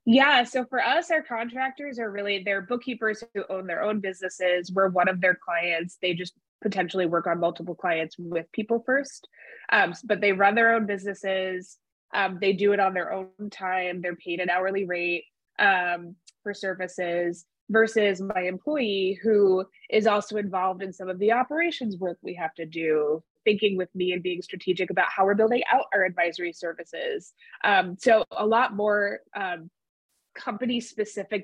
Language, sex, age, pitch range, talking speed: English, female, 20-39, 180-215 Hz, 175 wpm